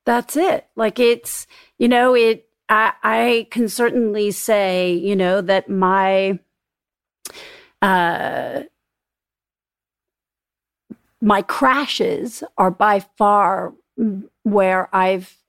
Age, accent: 40-59, American